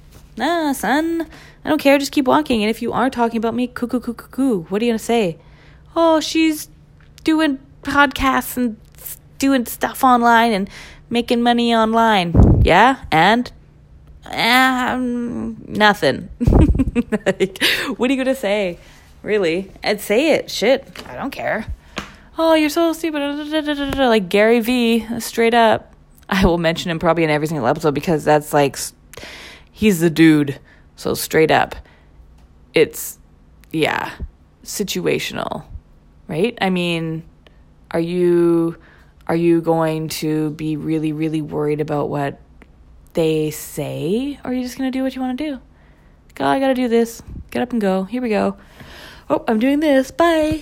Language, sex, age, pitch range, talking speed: English, female, 20-39, 155-255 Hz, 155 wpm